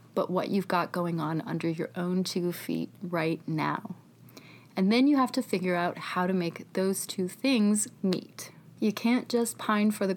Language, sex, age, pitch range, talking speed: English, female, 30-49, 175-215 Hz, 195 wpm